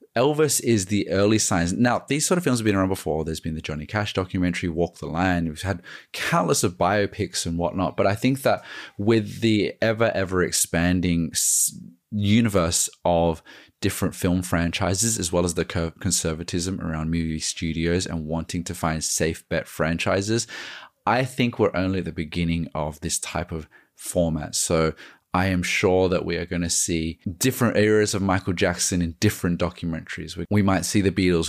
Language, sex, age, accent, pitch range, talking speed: English, male, 20-39, Australian, 85-100 Hz, 180 wpm